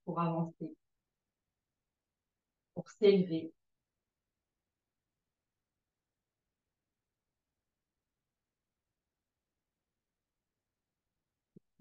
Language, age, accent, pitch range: French, 40-59, French, 185-220 Hz